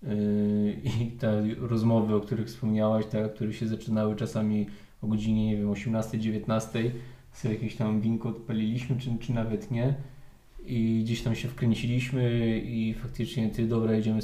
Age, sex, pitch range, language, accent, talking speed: 20-39, male, 110-120 Hz, Polish, native, 145 wpm